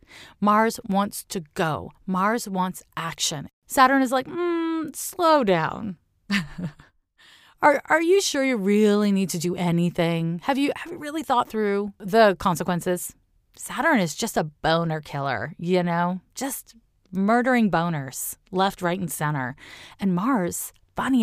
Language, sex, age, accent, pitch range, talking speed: English, female, 30-49, American, 170-230 Hz, 140 wpm